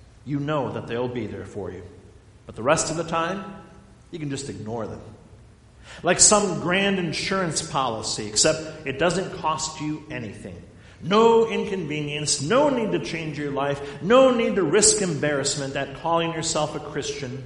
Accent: American